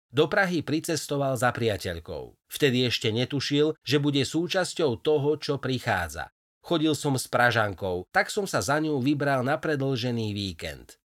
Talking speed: 145 wpm